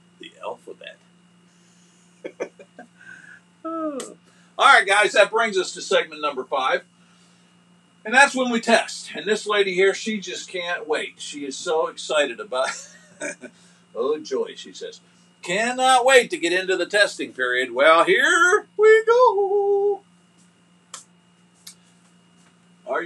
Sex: male